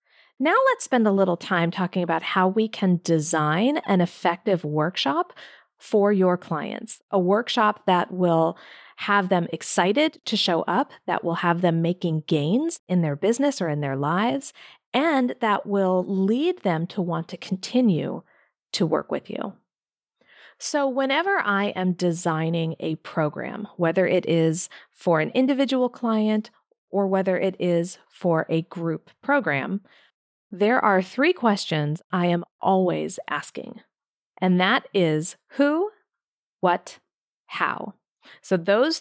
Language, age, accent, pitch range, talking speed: English, 40-59, American, 170-230 Hz, 140 wpm